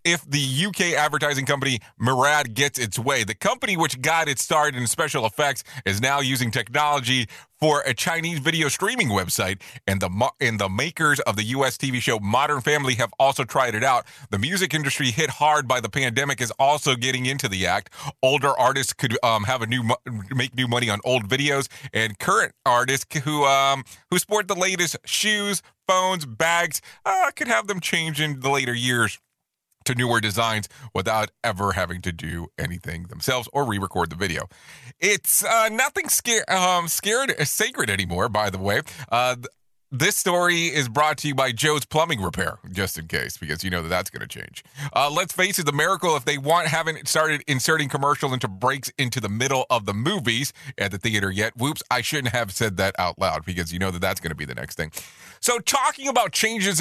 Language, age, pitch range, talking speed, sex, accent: English, 30-49, 115-155 Hz, 200 wpm, male, American